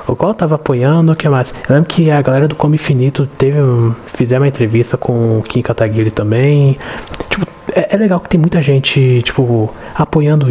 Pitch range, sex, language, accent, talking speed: 120-150 Hz, male, Portuguese, Brazilian, 200 wpm